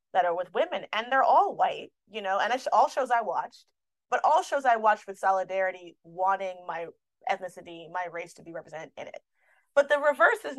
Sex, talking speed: female, 210 wpm